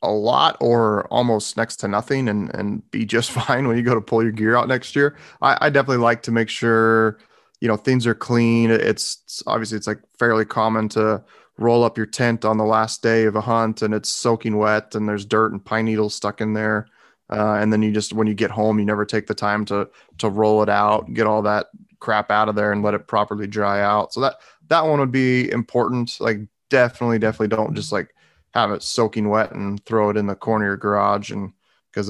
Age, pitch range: 30-49, 105-115 Hz